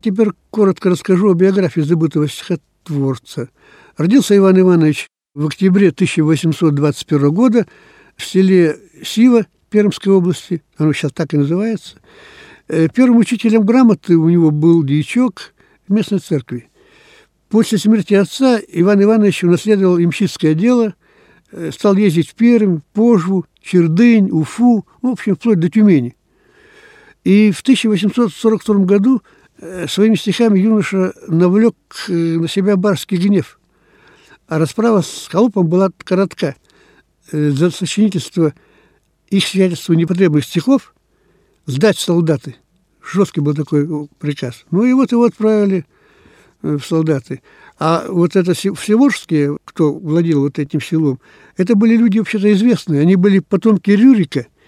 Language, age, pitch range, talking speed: Russian, 60-79, 160-215 Hz, 120 wpm